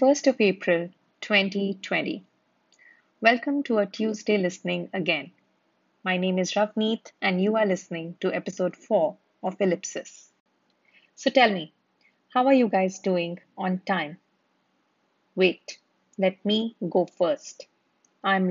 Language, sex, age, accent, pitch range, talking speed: English, female, 30-49, Indian, 180-215 Hz, 125 wpm